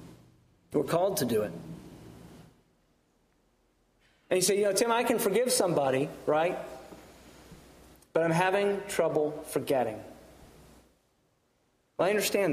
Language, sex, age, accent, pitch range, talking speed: English, male, 30-49, American, 115-170 Hz, 110 wpm